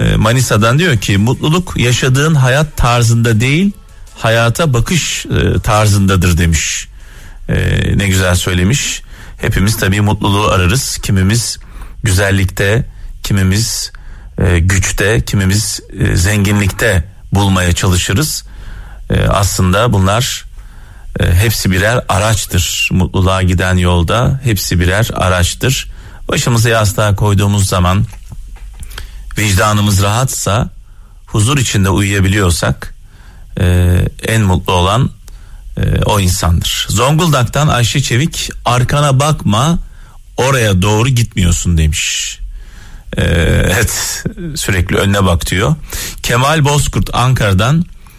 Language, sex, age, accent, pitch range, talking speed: Turkish, male, 40-59, native, 95-120 Hz, 90 wpm